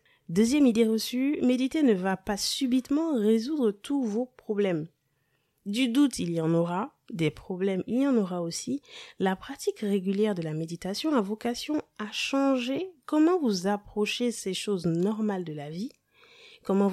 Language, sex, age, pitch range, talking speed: French, female, 30-49, 185-270 Hz, 160 wpm